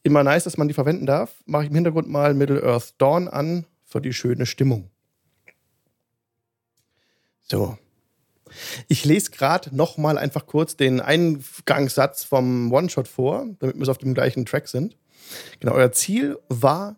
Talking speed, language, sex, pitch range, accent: 145 wpm, German, male, 120-150 Hz, German